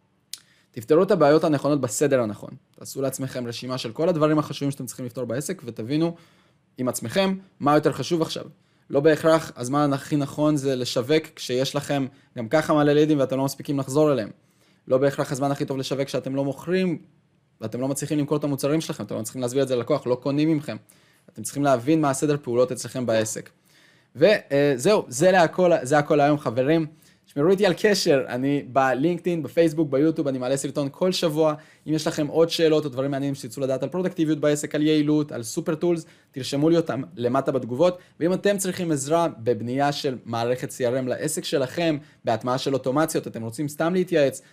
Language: Hebrew